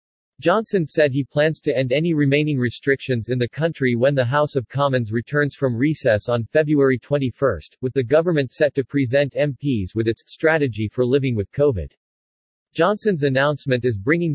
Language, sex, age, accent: English, male, 40-59, American